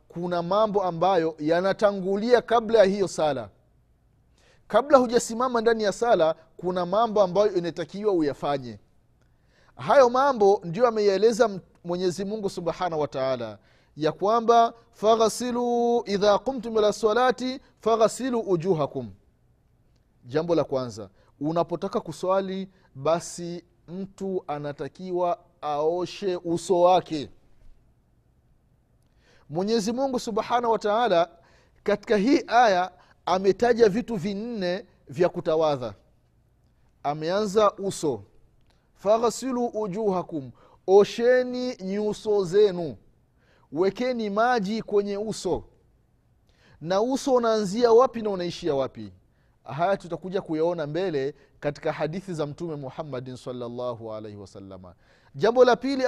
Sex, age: male, 30-49